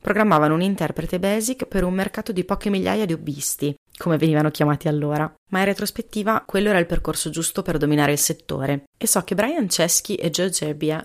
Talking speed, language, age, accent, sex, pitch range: 195 wpm, Italian, 30-49, native, female, 150-200 Hz